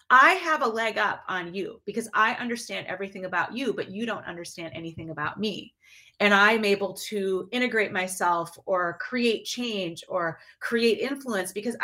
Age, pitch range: 30-49, 185-240 Hz